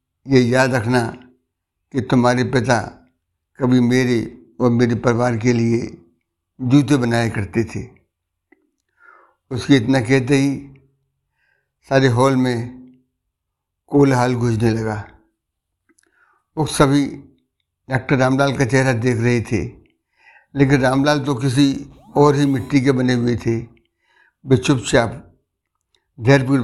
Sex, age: male, 60-79